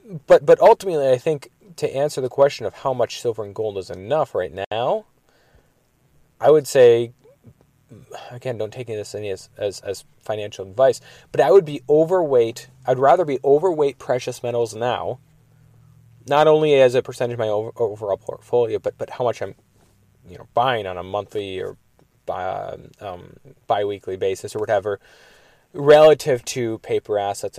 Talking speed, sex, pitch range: 165 wpm, male, 110-150 Hz